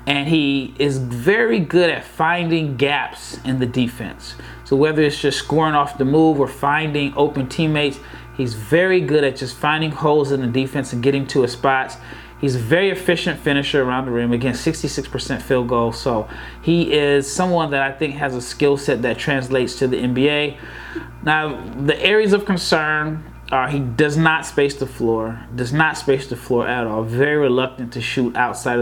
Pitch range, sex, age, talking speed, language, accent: 125-155 Hz, male, 30-49, 185 wpm, English, American